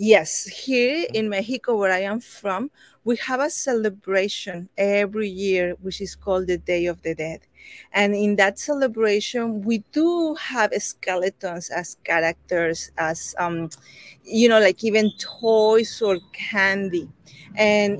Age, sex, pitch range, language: 30-49, female, 185-225 Hz, English